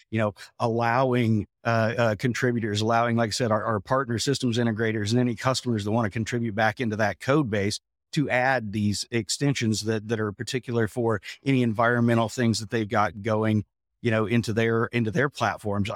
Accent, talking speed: American, 190 wpm